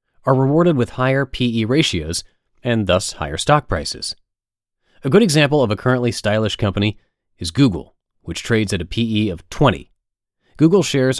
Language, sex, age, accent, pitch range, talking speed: English, male, 30-49, American, 95-130 Hz, 160 wpm